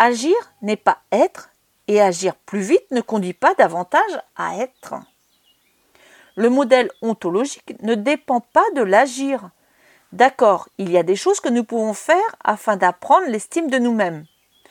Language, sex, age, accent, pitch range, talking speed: French, female, 40-59, French, 195-315 Hz, 150 wpm